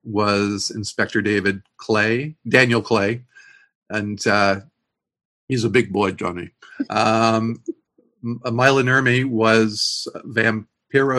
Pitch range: 105-130 Hz